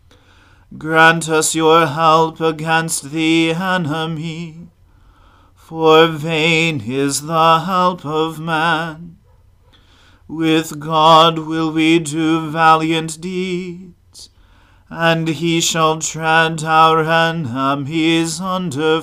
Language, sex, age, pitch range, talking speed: English, male, 40-59, 130-170 Hz, 85 wpm